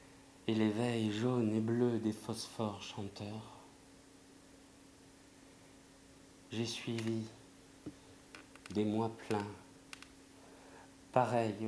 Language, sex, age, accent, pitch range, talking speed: French, male, 50-69, French, 105-115 Hz, 70 wpm